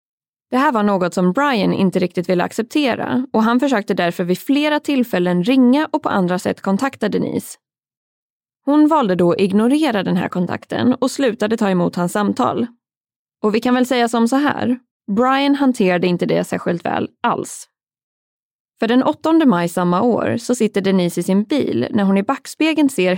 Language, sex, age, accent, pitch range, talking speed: Swedish, female, 20-39, native, 185-255 Hz, 180 wpm